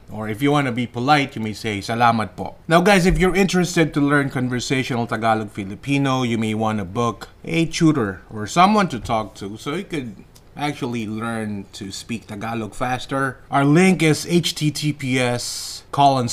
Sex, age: male, 30-49